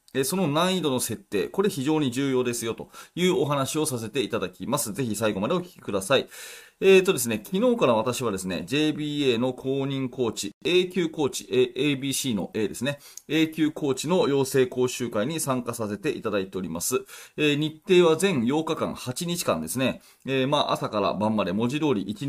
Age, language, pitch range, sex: 30-49, Japanese, 105-155 Hz, male